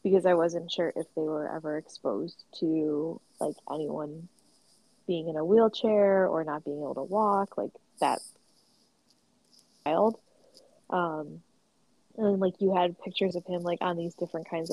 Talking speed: 155 wpm